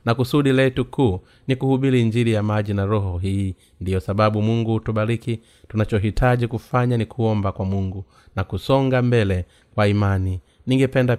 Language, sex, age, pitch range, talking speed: Swahili, male, 30-49, 100-125 Hz, 150 wpm